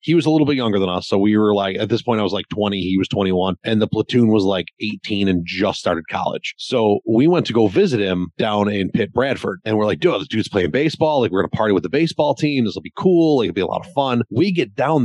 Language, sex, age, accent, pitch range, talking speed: English, male, 30-49, American, 100-125 Hz, 295 wpm